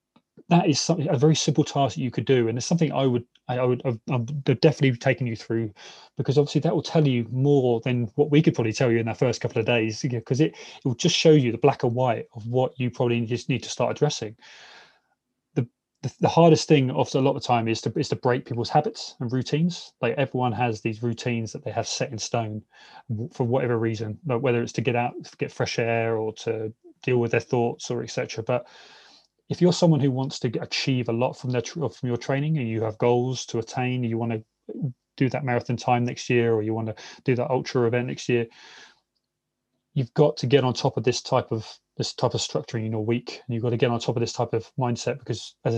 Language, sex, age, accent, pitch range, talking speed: English, male, 20-39, British, 120-140 Hz, 245 wpm